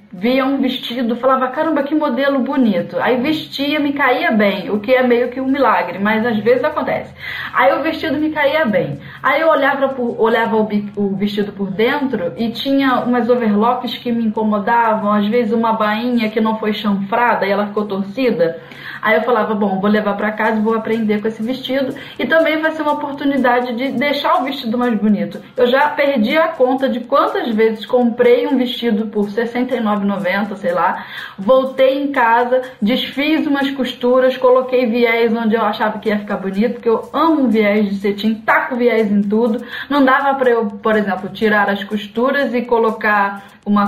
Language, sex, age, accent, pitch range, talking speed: Portuguese, female, 10-29, Brazilian, 215-265 Hz, 190 wpm